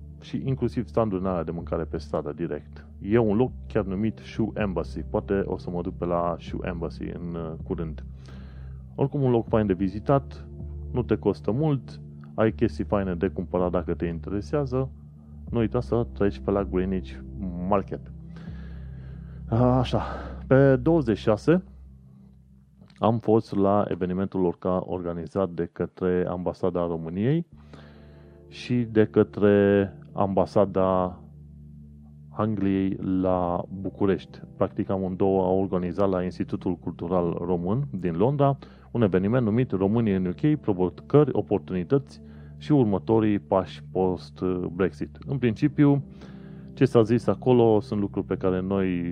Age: 30-49